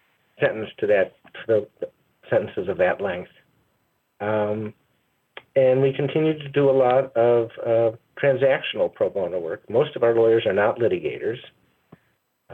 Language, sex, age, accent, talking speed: English, male, 50-69, American, 150 wpm